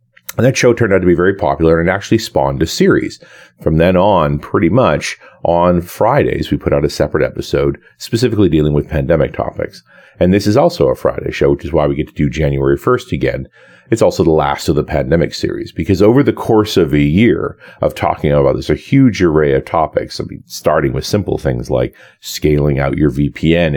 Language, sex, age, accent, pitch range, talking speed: English, male, 40-59, American, 70-90 Hz, 215 wpm